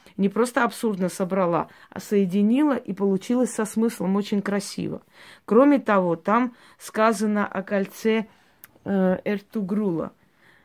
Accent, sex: native, female